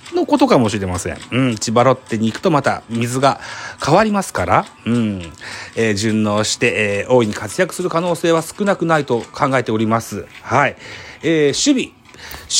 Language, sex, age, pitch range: Japanese, male, 40-59, 100-145 Hz